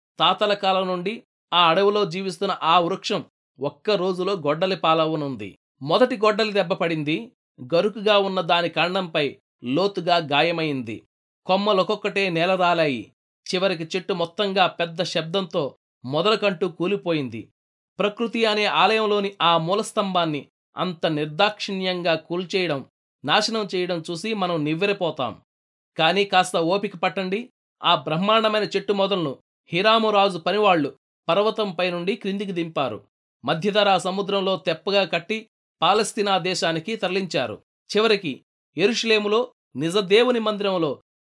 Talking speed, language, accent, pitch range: 100 wpm, Telugu, native, 170-210 Hz